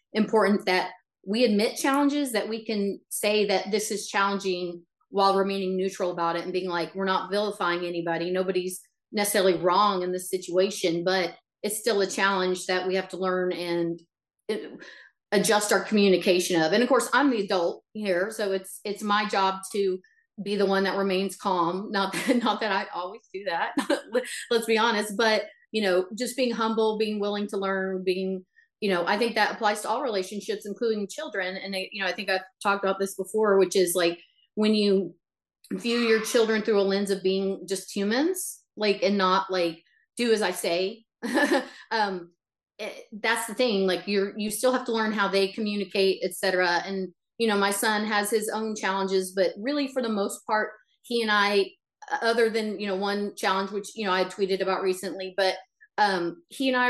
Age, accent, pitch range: 30-49, American, 185-220 Hz